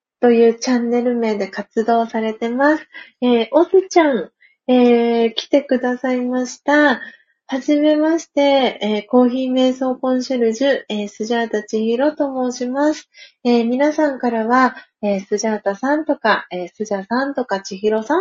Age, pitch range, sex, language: 30-49, 210-280 Hz, female, Japanese